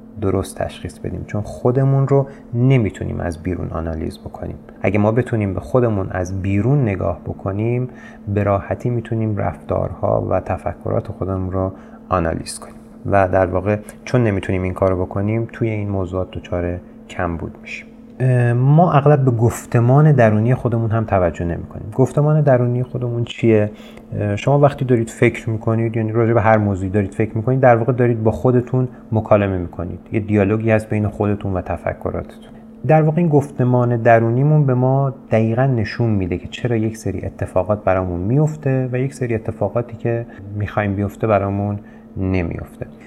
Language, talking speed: Persian, 155 wpm